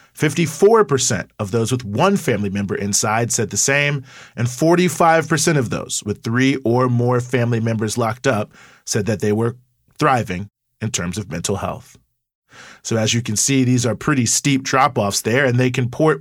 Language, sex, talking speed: English, male, 175 wpm